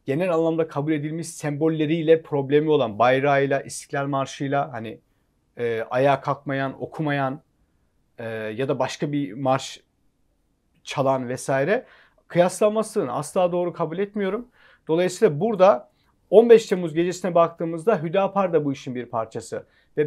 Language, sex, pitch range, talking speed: Turkish, male, 135-185 Hz, 125 wpm